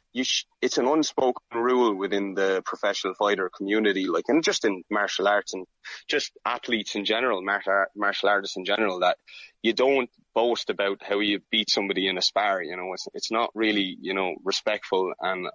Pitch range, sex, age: 100-120 Hz, male, 20-39